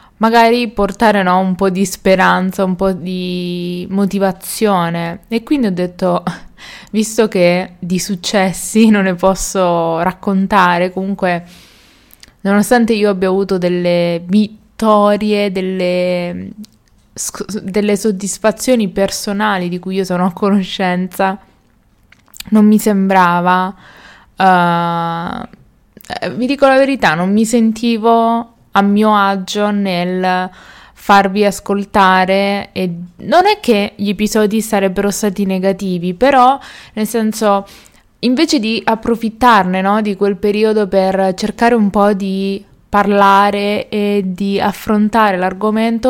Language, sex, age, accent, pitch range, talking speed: Italian, female, 20-39, native, 185-210 Hz, 110 wpm